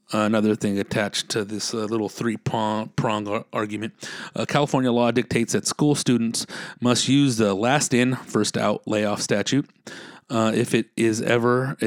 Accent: American